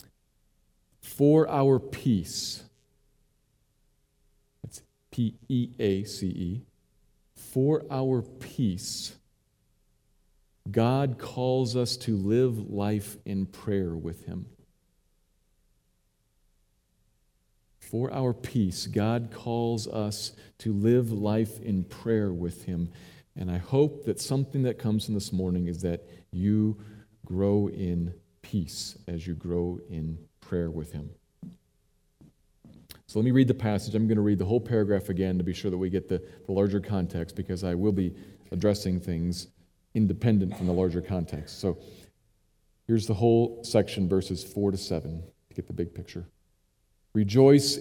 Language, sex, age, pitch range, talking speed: English, male, 40-59, 90-120 Hz, 130 wpm